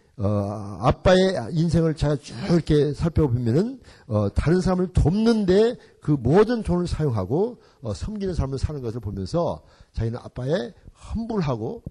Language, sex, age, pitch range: Korean, male, 50-69, 105-170 Hz